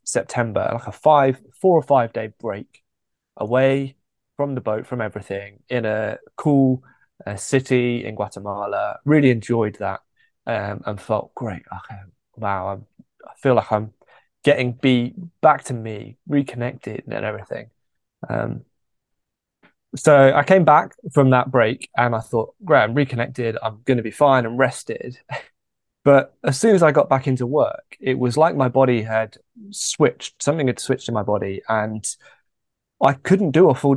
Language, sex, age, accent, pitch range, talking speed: English, male, 20-39, British, 110-140 Hz, 160 wpm